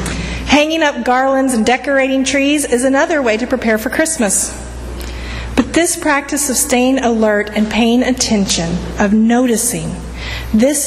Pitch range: 190-235 Hz